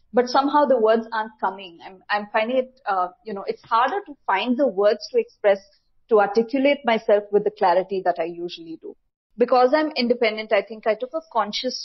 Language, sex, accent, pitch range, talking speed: English, female, Indian, 210-275 Hz, 205 wpm